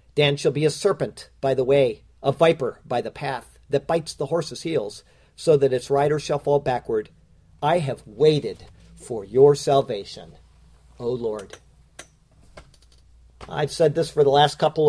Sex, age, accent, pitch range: male, 50-69, American, 120-150 Hz